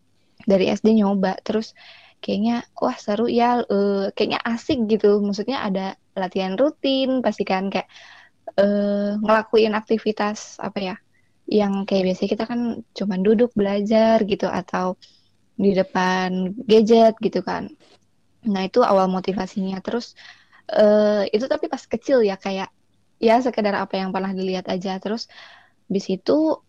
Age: 20-39